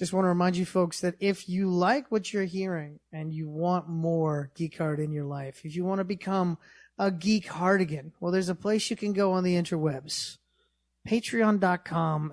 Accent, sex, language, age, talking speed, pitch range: American, male, English, 30-49, 200 wpm, 165-190 Hz